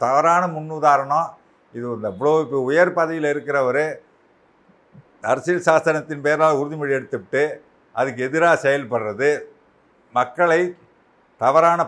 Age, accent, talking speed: 50-69, native, 95 wpm